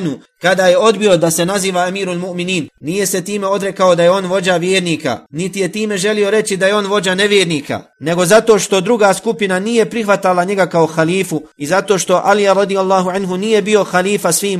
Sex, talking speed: male, 195 wpm